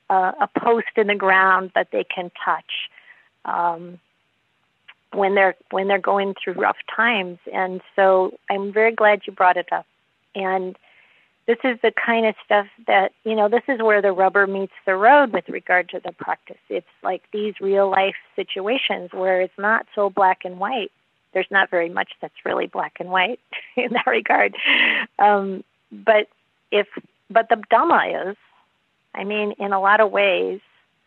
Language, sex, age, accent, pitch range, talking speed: English, female, 40-59, American, 180-210 Hz, 170 wpm